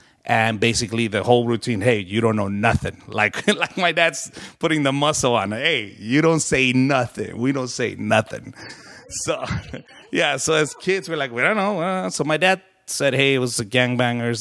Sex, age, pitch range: male, 30-49, 105-135 Hz